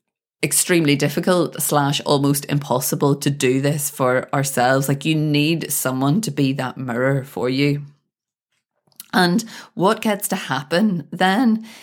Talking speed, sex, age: 130 wpm, female, 30-49